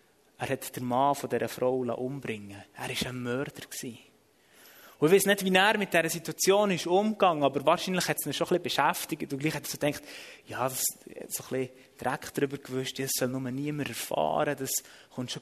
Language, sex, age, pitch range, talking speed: German, male, 20-39, 135-195 Hz, 200 wpm